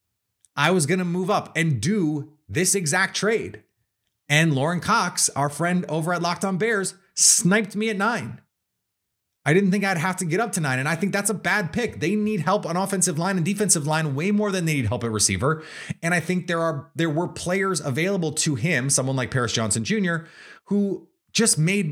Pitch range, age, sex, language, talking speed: 135-185 Hz, 30-49, male, English, 210 wpm